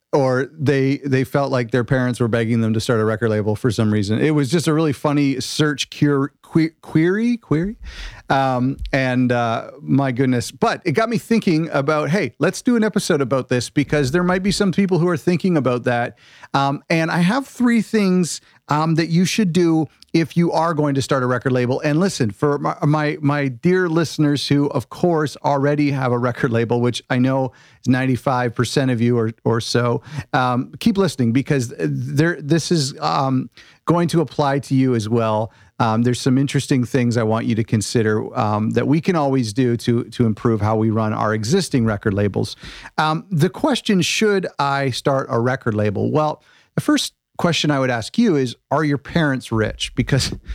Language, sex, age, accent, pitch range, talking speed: English, male, 40-59, American, 120-160 Hz, 200 wpm